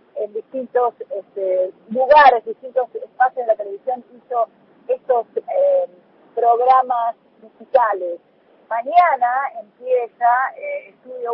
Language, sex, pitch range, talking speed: Spanish, female, 235-300 Hz, 90 wpm